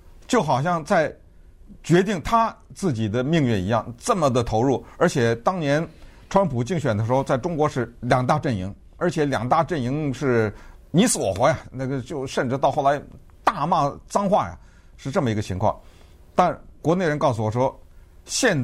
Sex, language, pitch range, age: male, Chinese, 115-190 Hz, 50-69